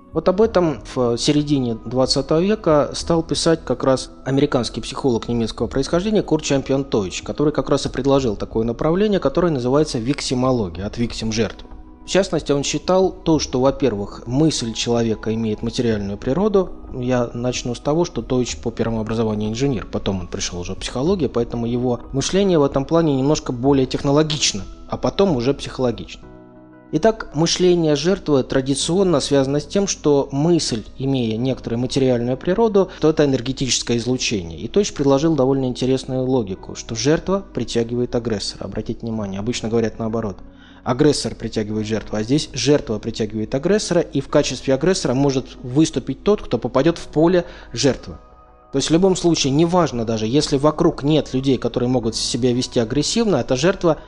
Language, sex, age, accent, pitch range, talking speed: Russian, male, 20-39, native, 115-155 Hz, 160 wpm